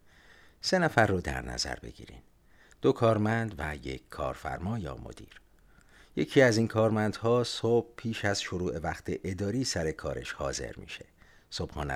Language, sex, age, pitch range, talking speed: Persian, male, 50-69, 80-115 Hz, 145 wpm